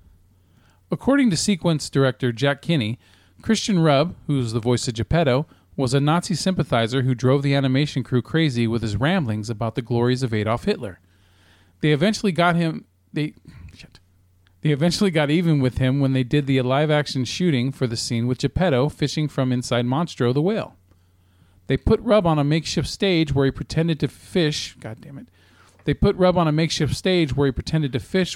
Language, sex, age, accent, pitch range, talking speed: English, male, 40-59, American, 115-160 Hz, 190 wpm